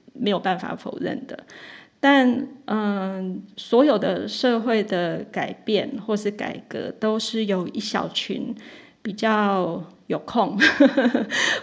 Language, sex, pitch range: Chinese, female, 190-235 Hz